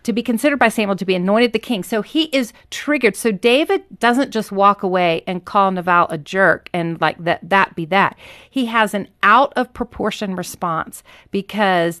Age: 40-59